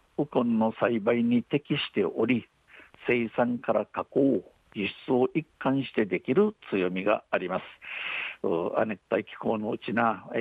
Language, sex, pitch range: Japanese, male, 110-135 Hz